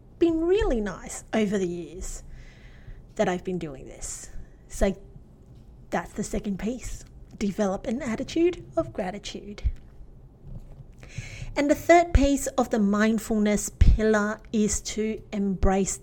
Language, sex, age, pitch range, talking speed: English, female, 30-49, 180-240 Hz, 120 wpm